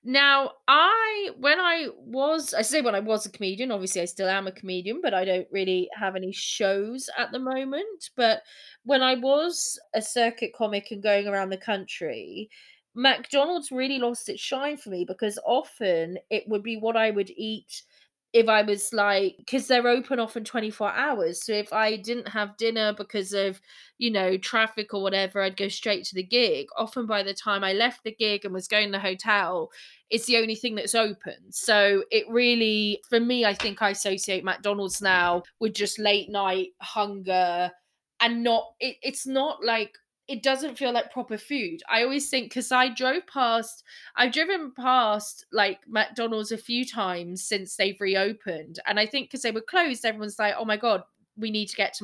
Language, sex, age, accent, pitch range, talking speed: English, female, 20-39, British, 200-255 Hz, 195 wpm